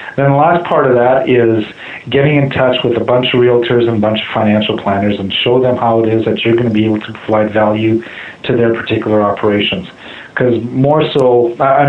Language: English